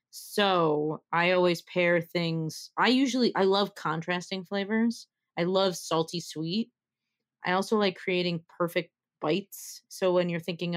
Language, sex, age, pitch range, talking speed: English, female, 30-49, 165-205 Hz, 140 wpm